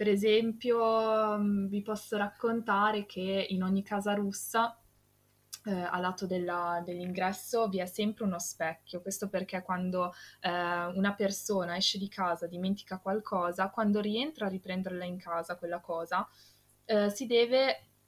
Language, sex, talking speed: Italian, female, 135 wpm